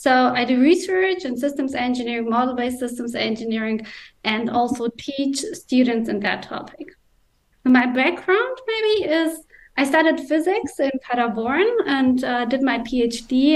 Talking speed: 135 wpm